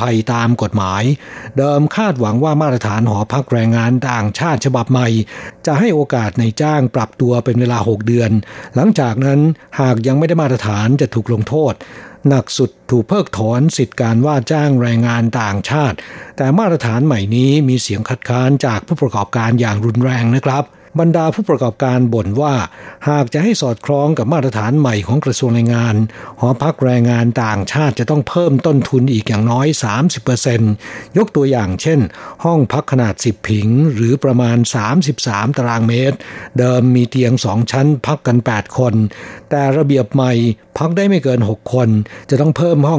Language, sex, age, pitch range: Thai, male, 60-79, 115-145 Hz